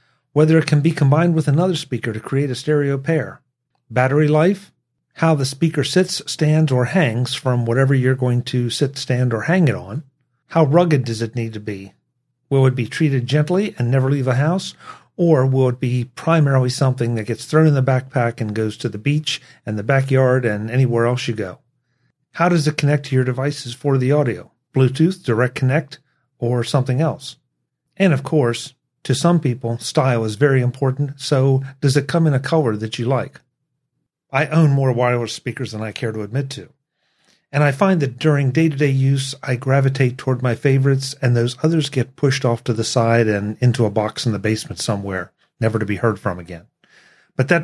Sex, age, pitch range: male, 40-59, 120-150 Hz